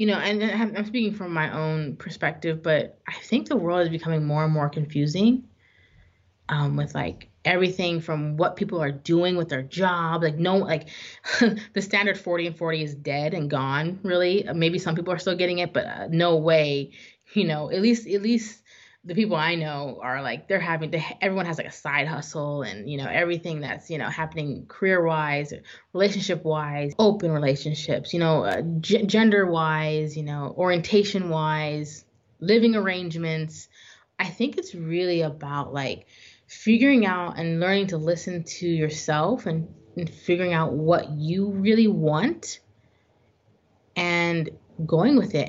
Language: English